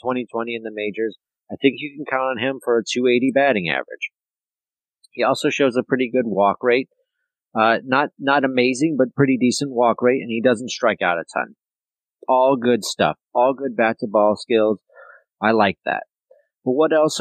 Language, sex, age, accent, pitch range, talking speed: English, male, 40-59, American, 115-140 Hz, 190 wpm